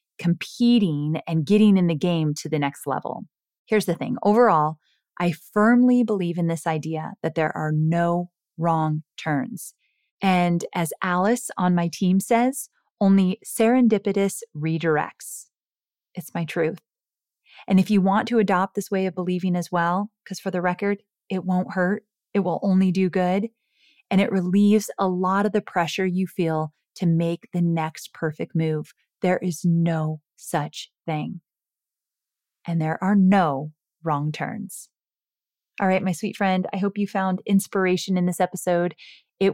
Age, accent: 30-49, American